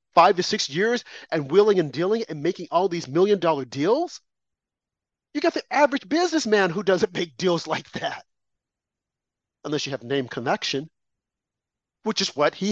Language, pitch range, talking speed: English, 200-295 Hz, 160 wpm